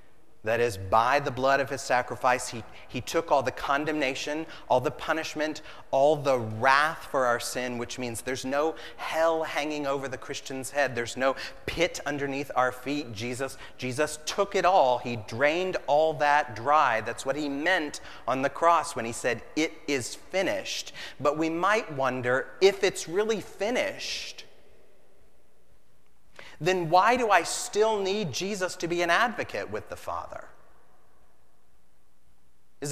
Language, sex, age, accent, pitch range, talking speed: English, male, 30-49, American, 120-155 Hz, 155 wpm